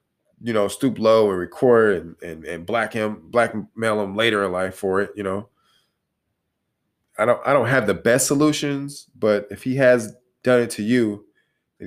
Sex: male